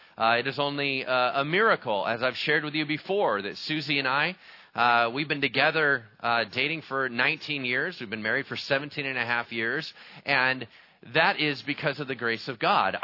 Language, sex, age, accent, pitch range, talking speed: English, male, 30-49, American, 130-160 Hz, 200 wpm